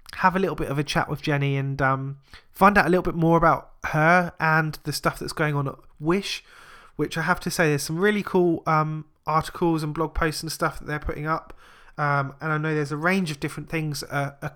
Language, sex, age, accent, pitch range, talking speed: English, male, 20-39, British, 140-165 Hz, 245 wpm